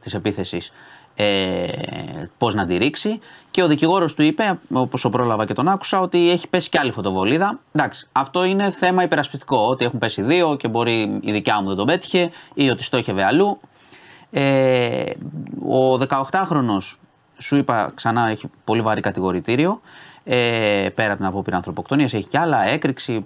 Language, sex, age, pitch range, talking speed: Greek, male, 30-49, 105-140 Hz, 165 wpm